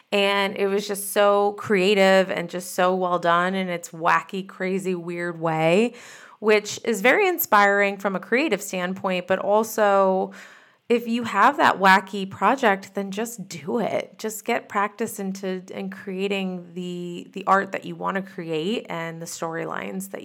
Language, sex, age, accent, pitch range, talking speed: English, female, 20-39, American, 175-205 Hz, 160 wpm